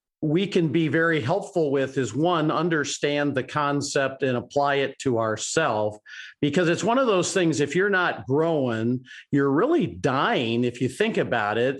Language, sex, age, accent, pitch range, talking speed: English, male, 50-69, American, 135-175 Hz, 175 wpm